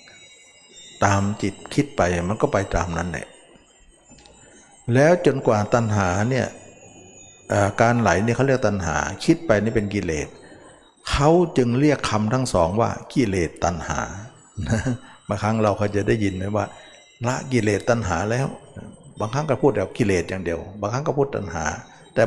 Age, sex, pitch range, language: 60-79, male, 95-125 Hz, Thai